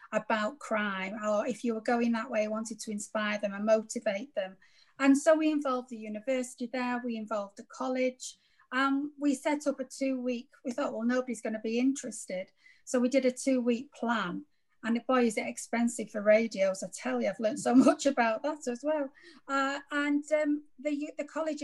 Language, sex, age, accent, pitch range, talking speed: English, female, 30-49, British, 225-275 Hz, 195 wpm